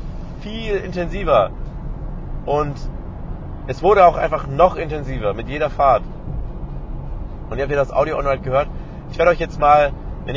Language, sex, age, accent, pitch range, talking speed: German, male, 30-49, German, 120-145 Hz, 150 wpm